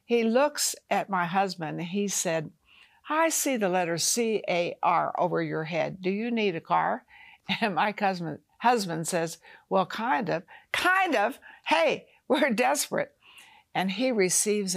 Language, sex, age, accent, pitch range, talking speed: English, female, 60-79, American, 170-230 Hz, 145 wpm